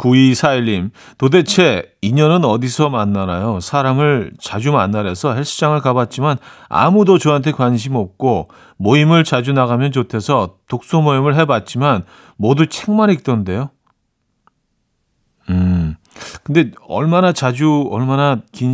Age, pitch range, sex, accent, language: 40-59, 110-160 Hz, male, native, Korean